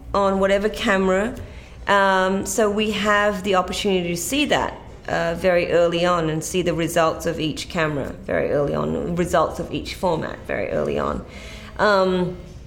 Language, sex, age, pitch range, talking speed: English, female, 30-49, 165-195 Hz, 160 wpm